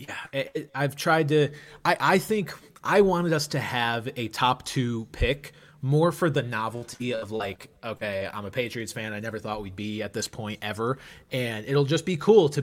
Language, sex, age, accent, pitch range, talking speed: English, male, 20-39, American, 110-145 Hz, 210 wpm